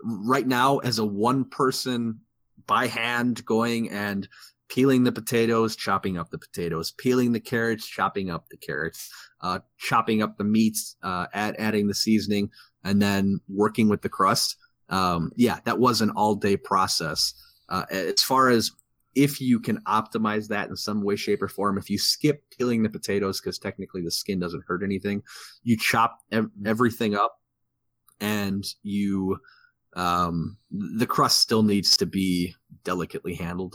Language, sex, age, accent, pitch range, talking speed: English, male, 30-49, American, 95-115 Hz, 160 wpm